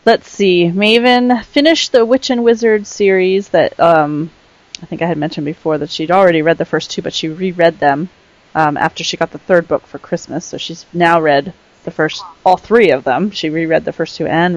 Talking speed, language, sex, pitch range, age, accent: 220 wpm, English, female, 165-210 Hz, 30-49, American